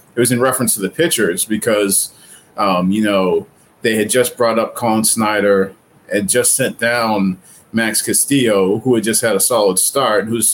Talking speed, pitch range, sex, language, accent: 180 wpm, 100-115 Hz, male, English, American